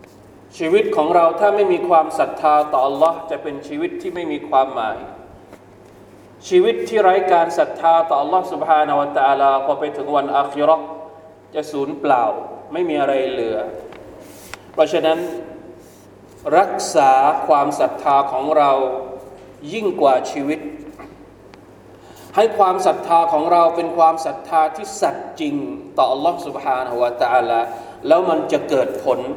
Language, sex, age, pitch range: Thai, male, 20-39, 140-185 Hz